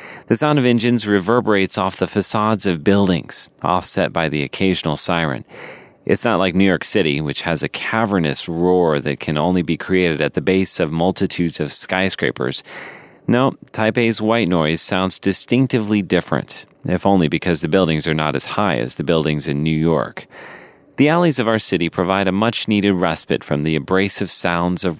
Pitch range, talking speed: 80-100 Hz, 180 wpm